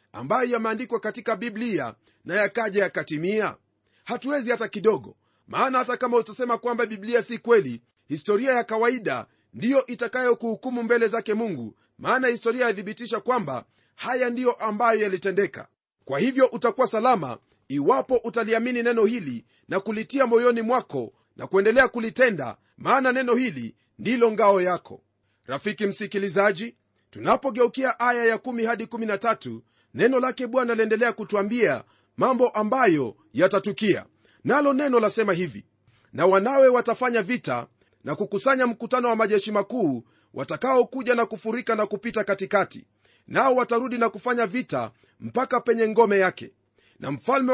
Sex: male